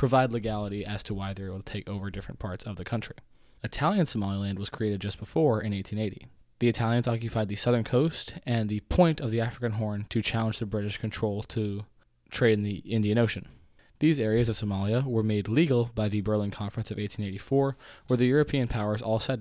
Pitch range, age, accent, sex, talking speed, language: 105-120 Hz, 20-39, American, male, 205 wpm, English